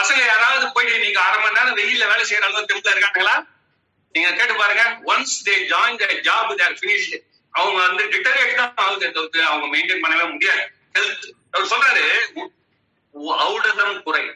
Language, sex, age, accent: Tamil, male, 40-59, native